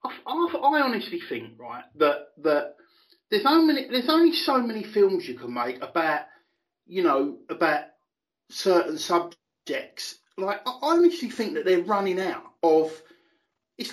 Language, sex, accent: English, male, British